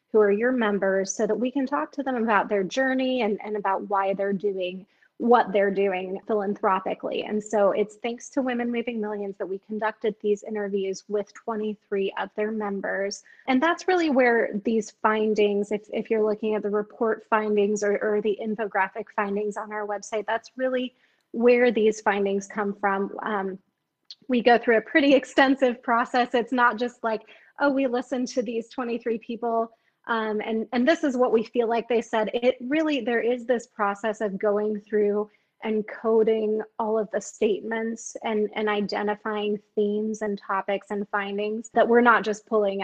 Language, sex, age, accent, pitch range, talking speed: English, female, 20-39, American, 205-235 Hz, 180 wpm